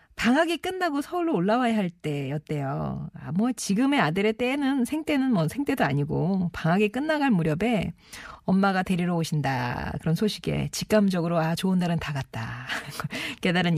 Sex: female